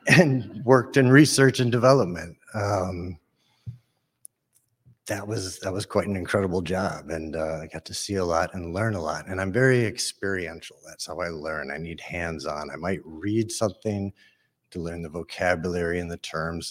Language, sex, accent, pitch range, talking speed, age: English, male, American, 90-125 Hz, 175 wpm, 50-69